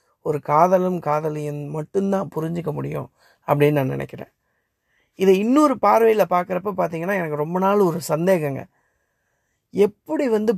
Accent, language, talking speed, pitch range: native, Tamil, 120 wpm, 150-190 Hz